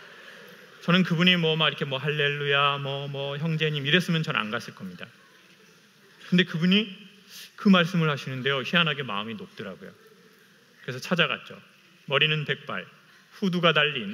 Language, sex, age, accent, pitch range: Korean, male, 30-49, native, 145-200 Hz